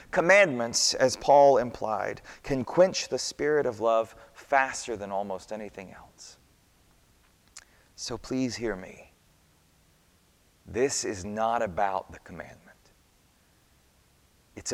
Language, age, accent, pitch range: English, 30-49, American, 95-140 Hz